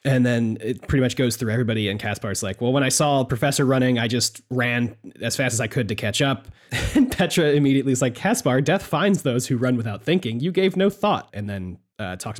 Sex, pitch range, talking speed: male, 120-175 Hz, 240 wpm